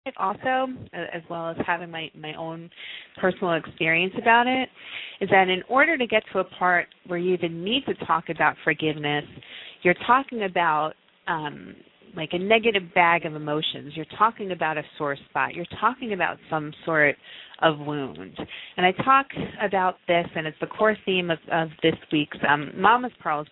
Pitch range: 160-195 Hz